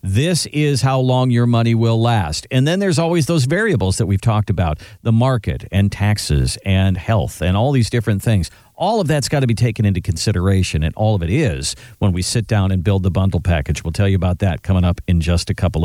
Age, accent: 50-69, American